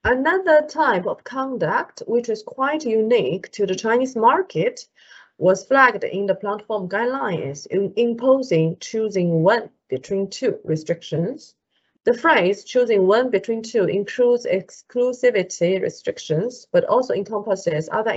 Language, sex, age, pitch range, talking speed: English, female, 30-49, 185-260 Hz, 125 wpm